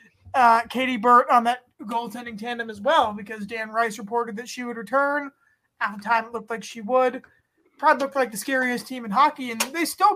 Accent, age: American, 20-39